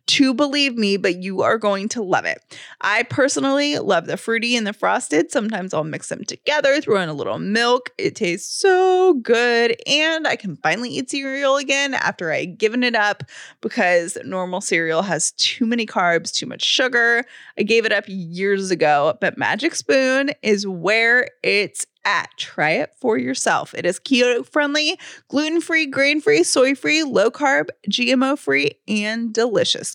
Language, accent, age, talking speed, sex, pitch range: English, American, 20-39, 165 wpm, female, 210-285 Hz